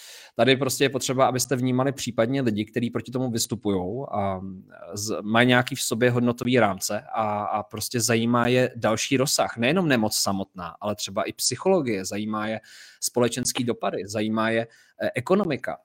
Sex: male